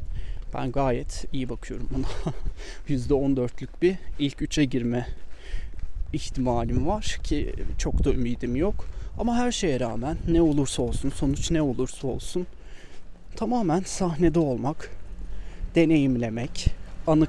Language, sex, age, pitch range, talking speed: Turkish, male, 30-49, 115-155 Hz, 115 wpm